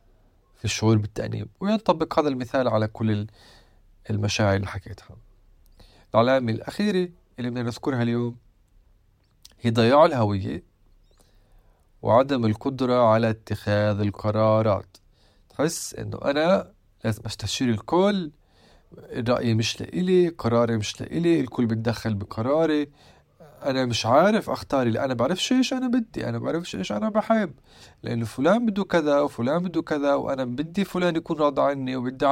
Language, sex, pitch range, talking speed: Arabic, male, 105-135 Hz, 130 wpm